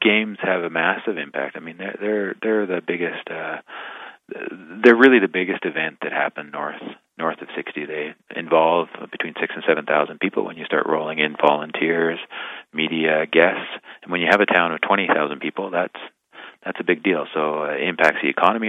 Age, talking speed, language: 30-49, 185 wpm, English